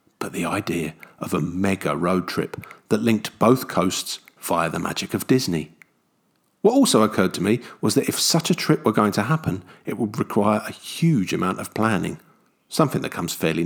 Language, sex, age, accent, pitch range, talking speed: English, male, 40-59, British, 110-185 Hz, 195 wpm